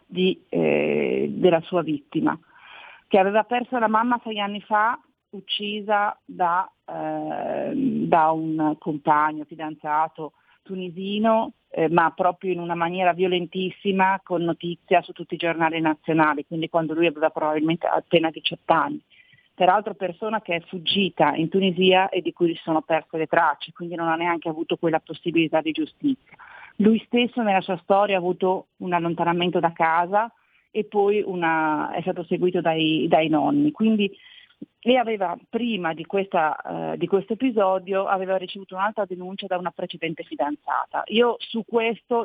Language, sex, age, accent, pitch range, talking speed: Italian, female, 40-59, native, 165-200 Hz, 155 wpm